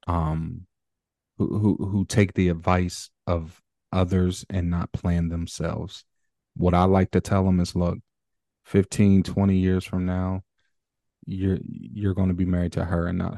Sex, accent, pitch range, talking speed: male, American, 85-95 Hz, 160 wpm